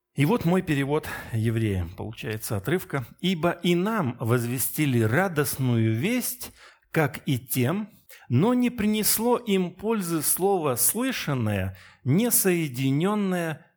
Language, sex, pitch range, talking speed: Russian, male, 115-165 Hz, 110 wpm